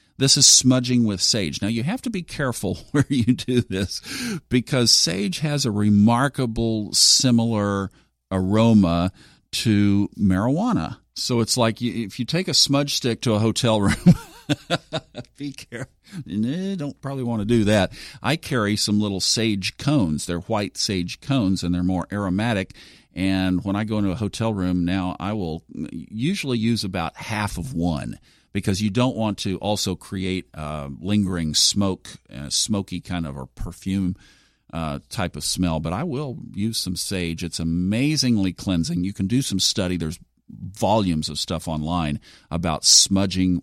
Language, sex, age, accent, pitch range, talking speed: English, male, 50-69, American, 90-115 Hz, 155 wpm